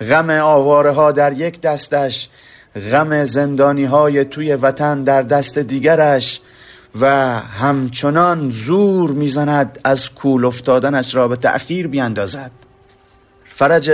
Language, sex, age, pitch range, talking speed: Persian, male, 30-49, 120-145 Hz, 110 wpm